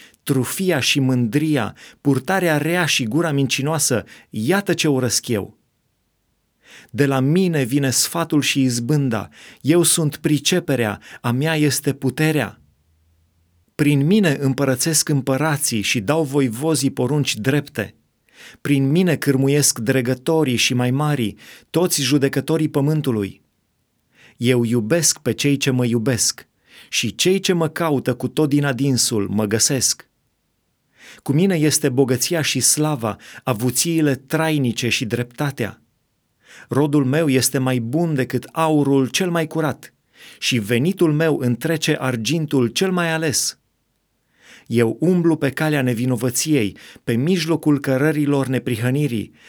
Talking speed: 120 wpm